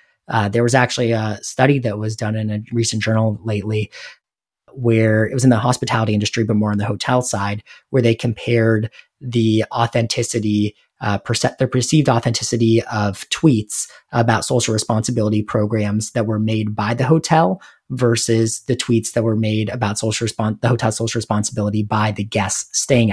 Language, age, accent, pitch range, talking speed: English, 30-49, American, 105-120 Hz, 170 wpm